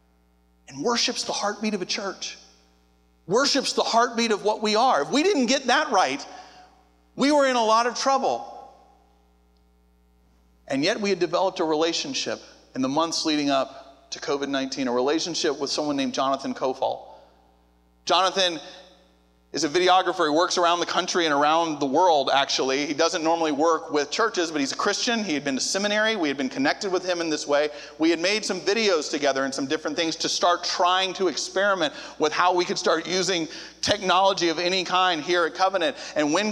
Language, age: English, 40-59